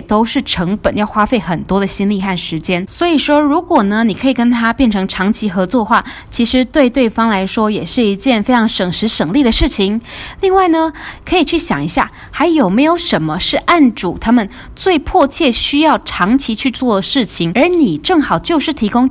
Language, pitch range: Chinese, 210-290 Hz